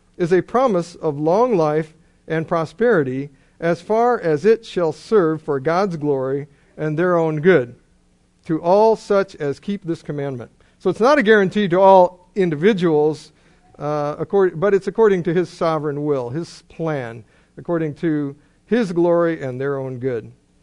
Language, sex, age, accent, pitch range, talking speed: English, male, 50-69, American, 145-190 Hz, 155 wpm